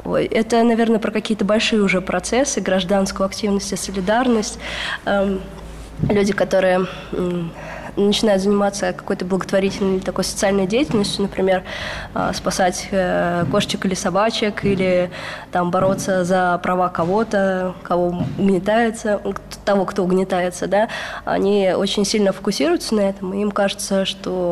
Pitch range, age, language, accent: 190-215 Hz, 20-39, Russian, native